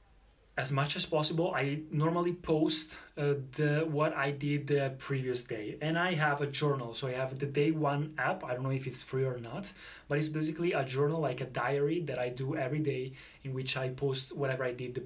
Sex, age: male, 20-39